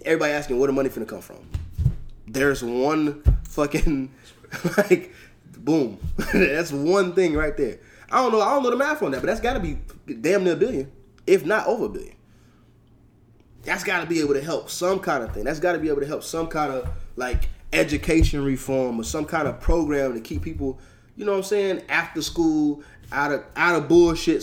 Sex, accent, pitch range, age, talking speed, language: male, American, 115-165 Hz, 20-39, 205 wpm, English